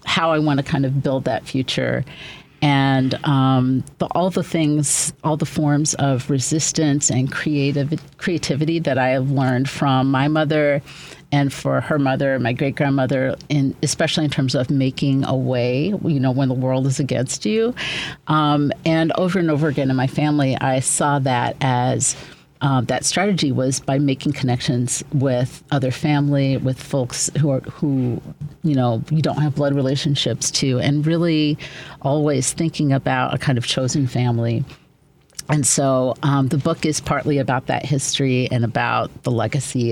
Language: English